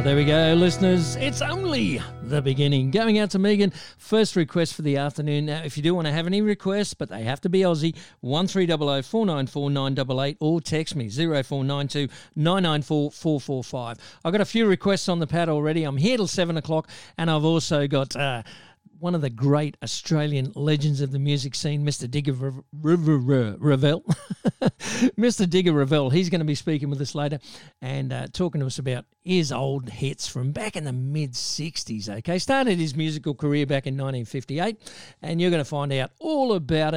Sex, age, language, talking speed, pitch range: male, 50-69, English, 185 wpm, 135-175 Hz